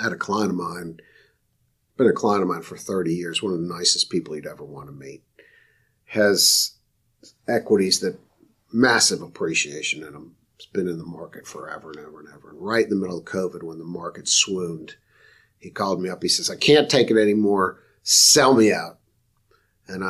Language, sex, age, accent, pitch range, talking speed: English, male, 50-69, American, 90-115 Hz, 200 wpm